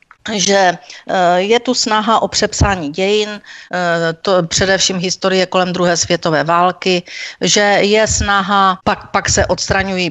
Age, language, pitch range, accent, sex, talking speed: 40-59, Czech, 175-210 Hz, native, female, 125 wpm